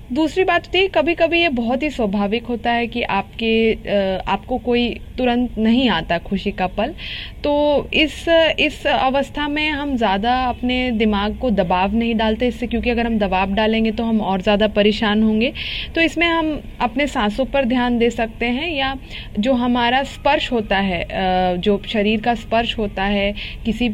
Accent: native